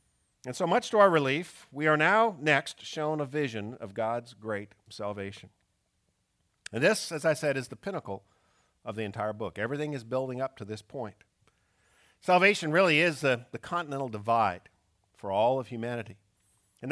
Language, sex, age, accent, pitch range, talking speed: English, male, 50-69, American, 110-155 Hz, 170 wpm